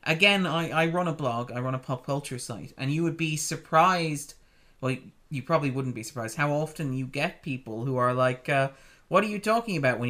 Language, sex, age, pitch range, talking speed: English, male, 30-49, 125-170 Hz, 225 wpm